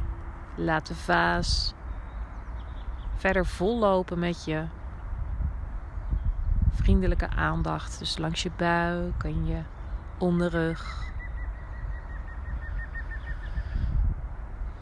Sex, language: female, Dutch